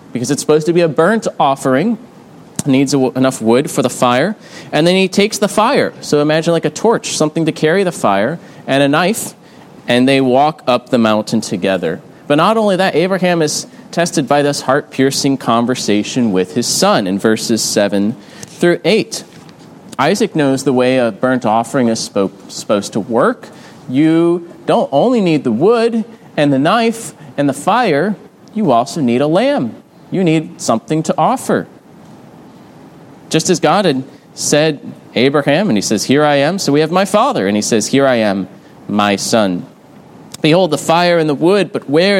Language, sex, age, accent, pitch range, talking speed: English, male, 30-49, American, 130-180 Hz, 180 wpm